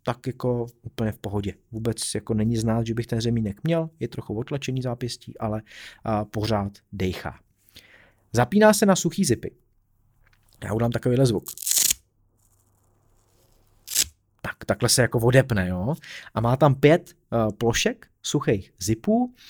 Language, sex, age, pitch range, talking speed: Czech, male, 30-49, 110-145 Hz, 135 wpm